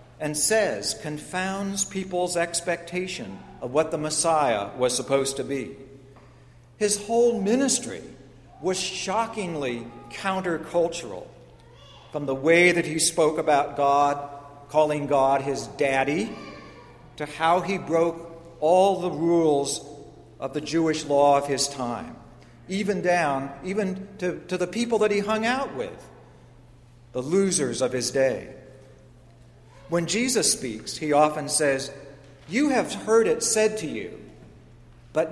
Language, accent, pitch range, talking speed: English, American, 135-180 Hz, 130 wpm